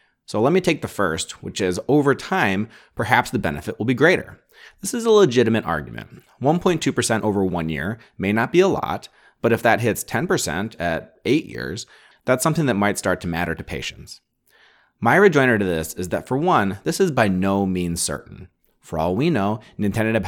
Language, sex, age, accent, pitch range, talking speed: English, male, 30-49, American, 90-125 Hz, 195 wpm